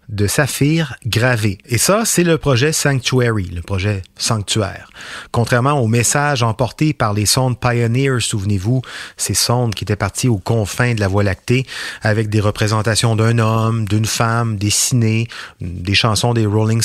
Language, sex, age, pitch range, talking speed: French, male, 30-49, 105-130 Hz, 155 wpm